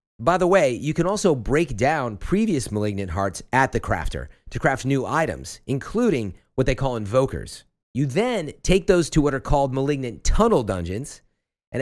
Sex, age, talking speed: male, 40-59, 180 wpm